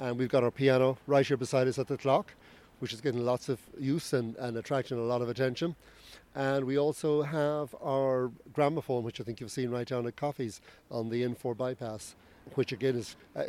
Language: English